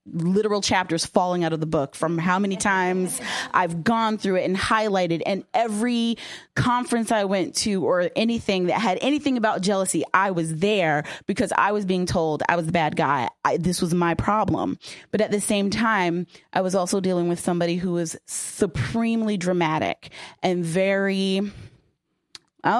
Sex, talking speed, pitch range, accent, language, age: female, 170 wpm, 175-215 Hz, American, English, 20-39